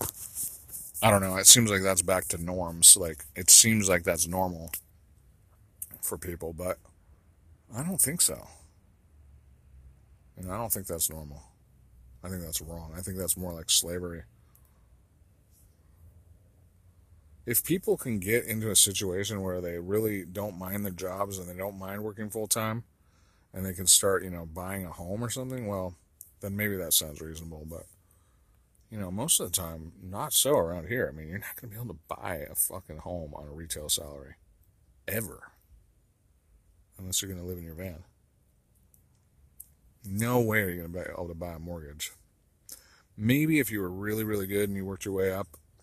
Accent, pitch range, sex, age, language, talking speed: American, 85-105 Hz, male, 40-59, English, 180 wpm